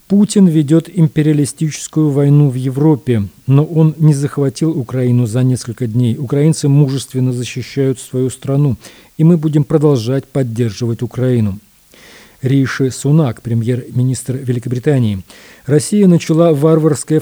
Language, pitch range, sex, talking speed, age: Russian, 130-155 Hz, male, 110 wpm, 40-59